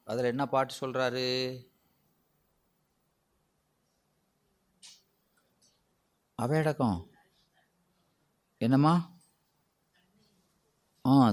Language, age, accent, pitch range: Tamil, 30-49, native, 125-150 Hz